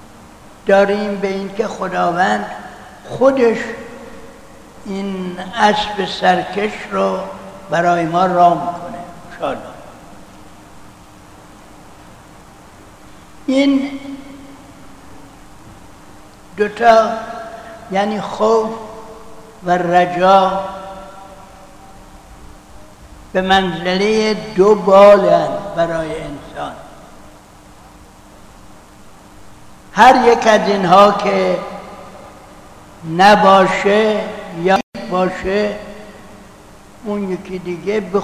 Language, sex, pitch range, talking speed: Persian, male, 175-210 Hz, 60 wpm